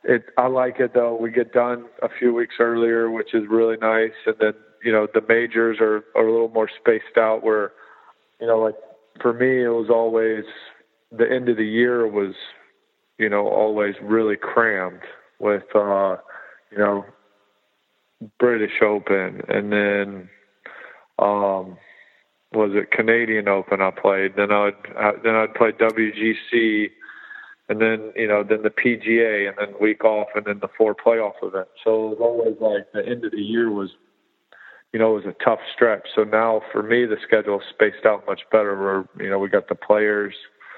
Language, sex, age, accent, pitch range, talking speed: English, male, 40-59, American, 100-115 Hz, 180 wpm